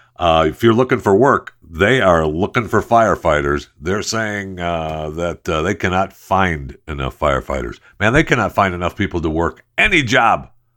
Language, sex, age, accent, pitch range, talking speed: English, male, 60-79, American, 85-115 Hz, 175 wpm